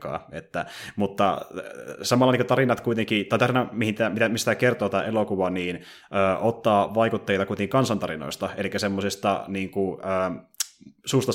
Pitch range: 95-115 Hz